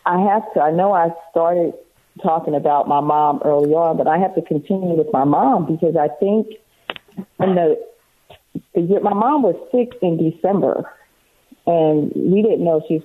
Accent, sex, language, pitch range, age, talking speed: American, female, English, 150-190 Hz, 40-59, 175 wpm